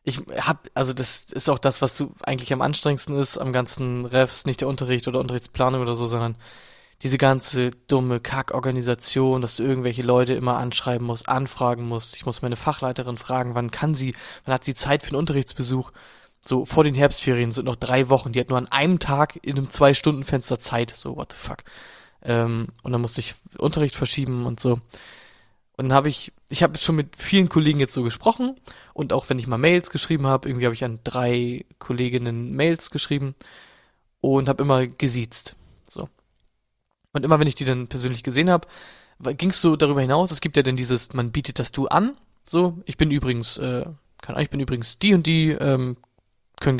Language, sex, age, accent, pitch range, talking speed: German, male, 20-39, German, 125-145 Hz, 200 wpm